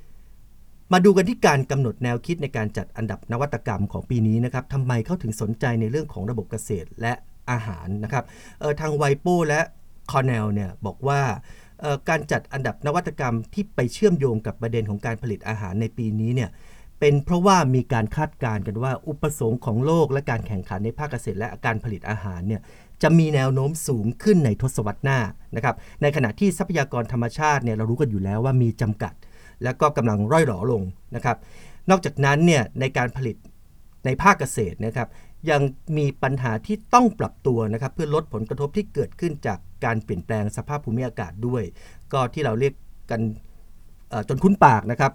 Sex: male